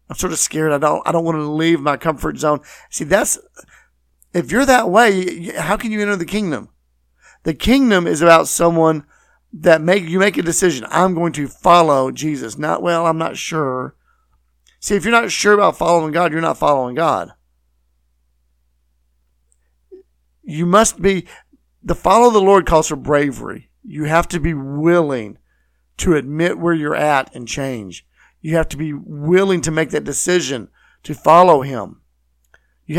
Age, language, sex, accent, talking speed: 50-69, English, male, American, 170 wpm